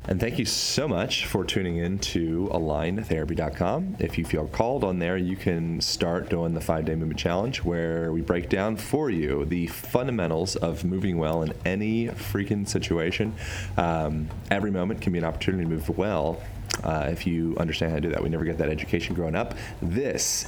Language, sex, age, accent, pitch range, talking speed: English, male, 30-49, American, 85-105 Hz, 190 wpm